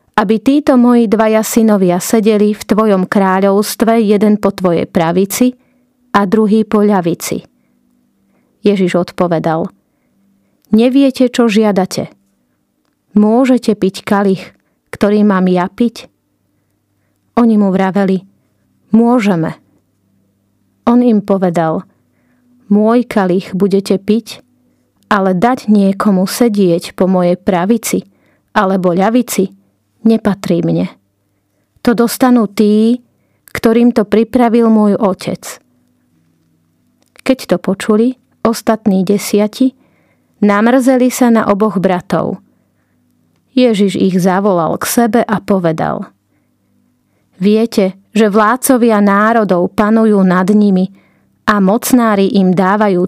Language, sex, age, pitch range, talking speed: Slovak, female, 30-49, 185-225 Hz, 100 wpm